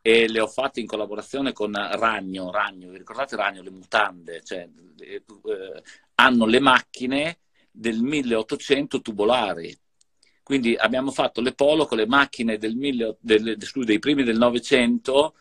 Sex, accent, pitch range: male, native, 110-140 Hz